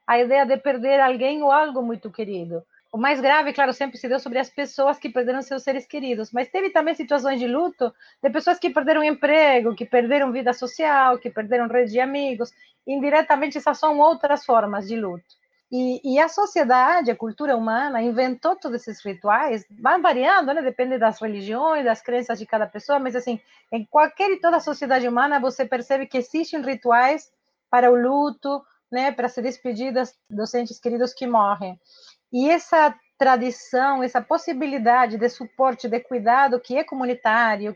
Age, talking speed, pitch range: 40-59, 175 wpm, 235-290 Hz